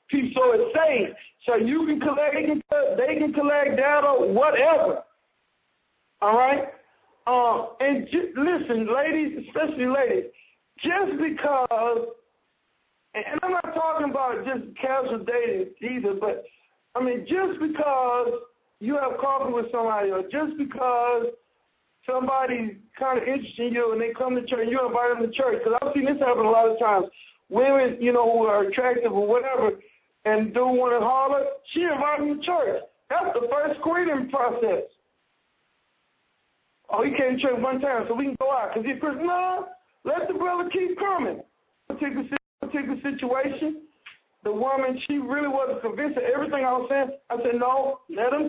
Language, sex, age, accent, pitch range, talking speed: English, male, 50-69, American, 245-310 Hz, 165 wpm